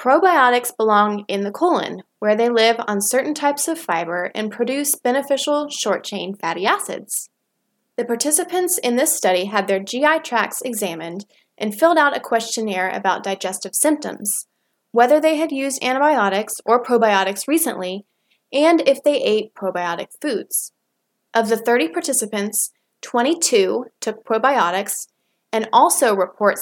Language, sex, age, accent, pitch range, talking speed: English, female, 20-39, American, 200-280 Hz, 135 wpm